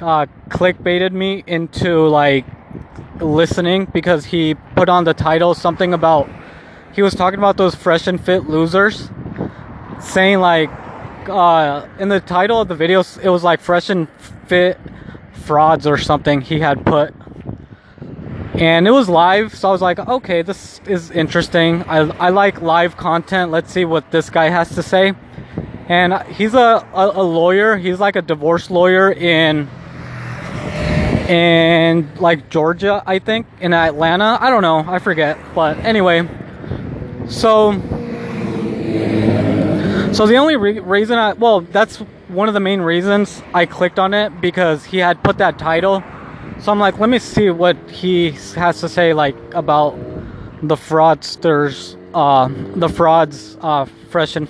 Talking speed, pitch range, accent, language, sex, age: 155 wpm, 155-190 Hz, American, English, male, 20-39